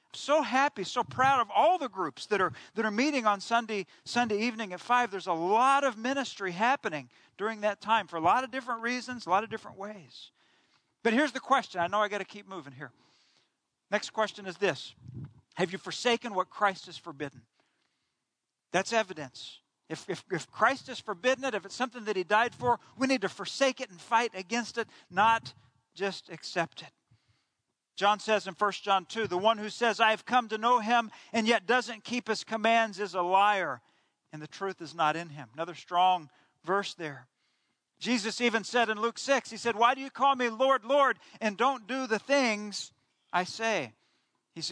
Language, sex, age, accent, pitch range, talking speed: English, male, 40-59, American, 190-245 Hz, 200 wpm